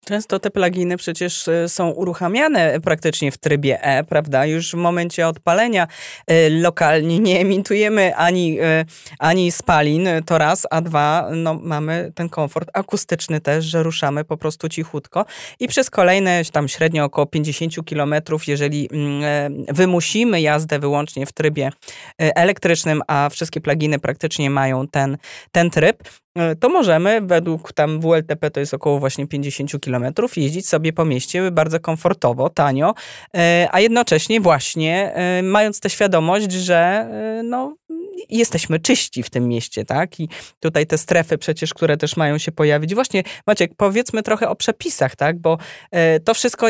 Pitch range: 150-190 Hz